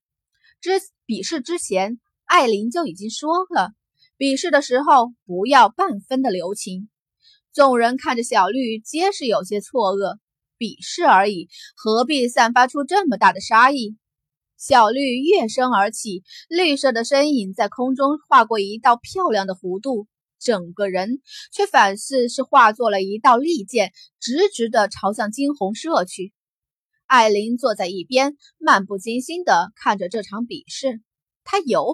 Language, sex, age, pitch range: Chinese, female, 20-39, 200-295 Hz